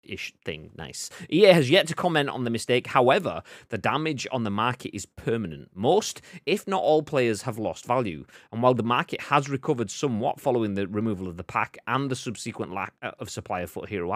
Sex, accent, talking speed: male, British, 210 wpm